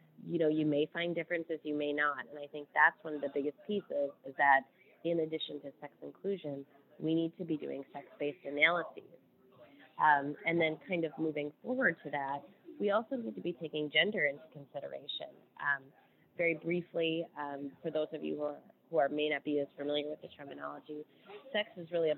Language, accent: English, American